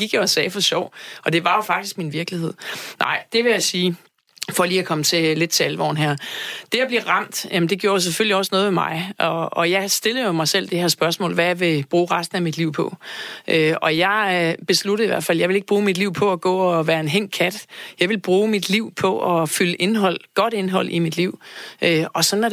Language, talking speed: Danish, 260 wpm